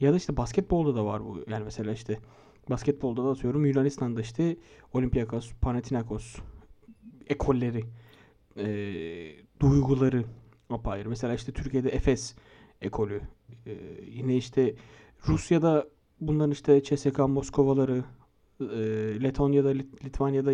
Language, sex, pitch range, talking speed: Turkish, male, 120-145 Hz, 100 wpm